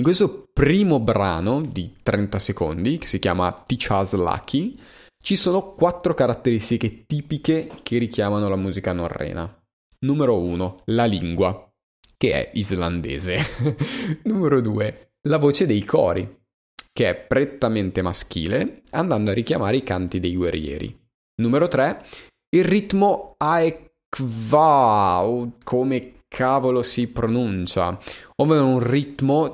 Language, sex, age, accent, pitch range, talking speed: Italian, male, 20-39, native, 95-135 Hz, 120 wpm